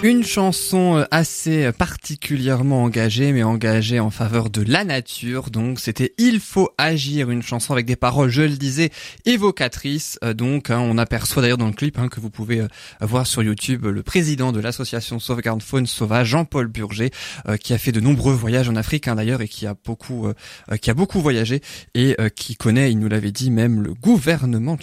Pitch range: 115-160 Hz